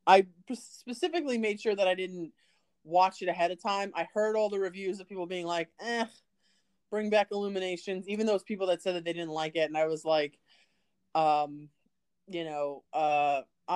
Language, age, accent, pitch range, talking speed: English, 30-49, American, 160-205 Hz, 190 wpm